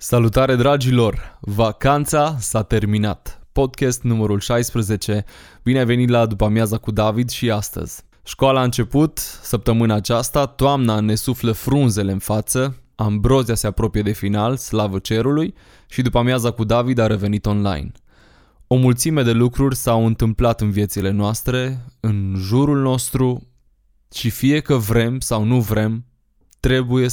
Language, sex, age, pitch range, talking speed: Romanian, male, 20-39, 105-130 Hz, 135 wpm